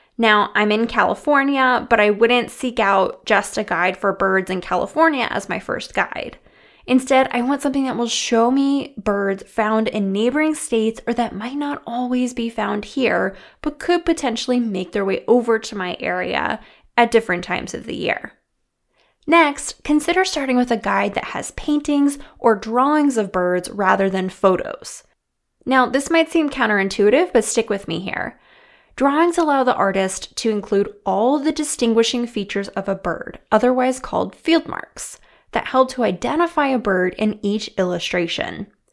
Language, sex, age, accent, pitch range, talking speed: English, female, 20-39, American, 200-265 Hz, 170 wpm